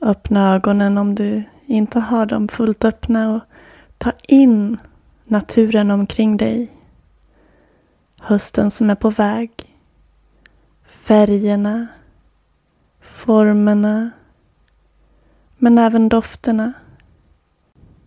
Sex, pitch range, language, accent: female, 205-230 Hz, Swedish, native